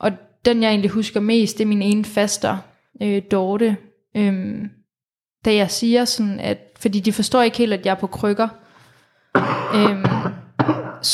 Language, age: Danish, 20-39